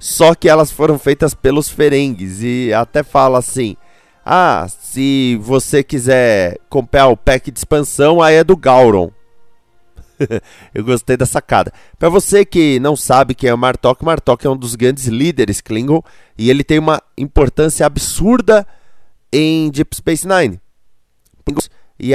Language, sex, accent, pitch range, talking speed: Portuguese, male, Brazilian, 115-155 Hz, 150 wpm